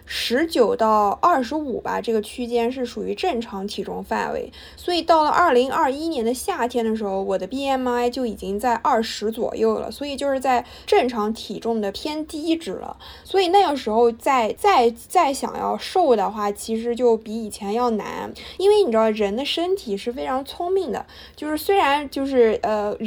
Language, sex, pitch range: Chinese, female, 215-270 Hz